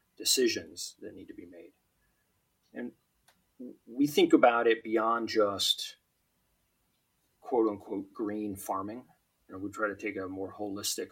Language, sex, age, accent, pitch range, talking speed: English, male, 30-49, American, 95-155 Hz, 140 wpm